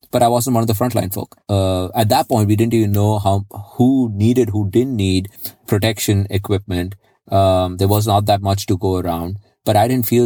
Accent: Indian